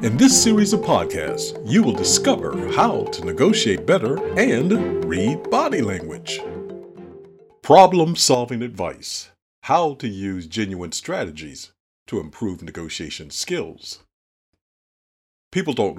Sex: male